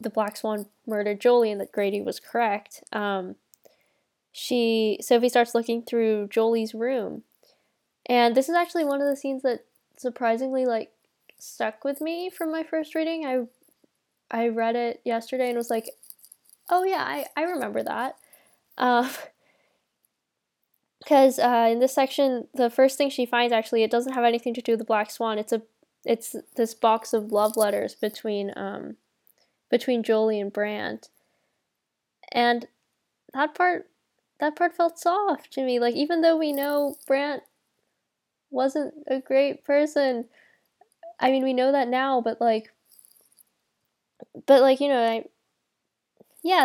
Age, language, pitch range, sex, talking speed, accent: 10-29, English, 230-280 Hz, female, 150 wpm, American